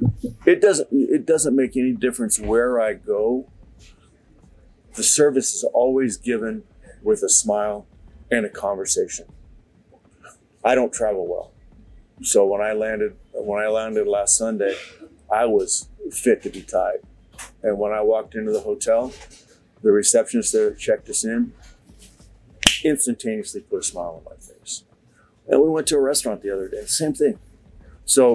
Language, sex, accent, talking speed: English, male, American, 150 wpm